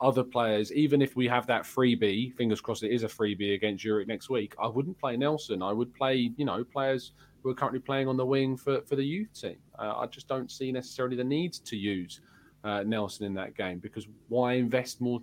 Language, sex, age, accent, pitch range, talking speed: English, male, 20-39, British, 110-135 Hz, 235 wpm